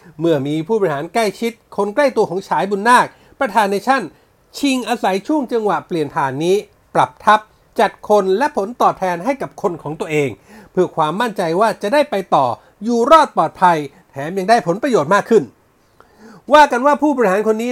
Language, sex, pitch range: Thai, male, 180-245 Hz